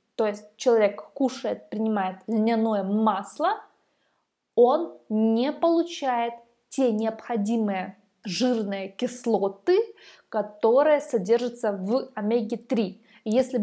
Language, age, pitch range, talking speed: Russian, 20-39, 215-270 Hz, 85 wpm